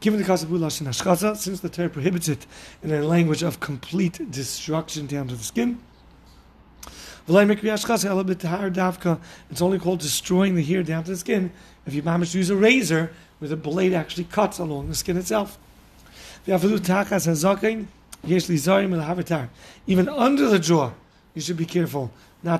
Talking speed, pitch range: 145 wpm, 145-190 Hz